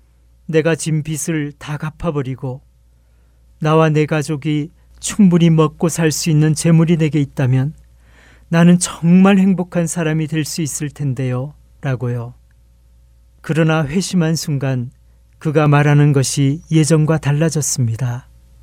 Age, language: 40-59, Korean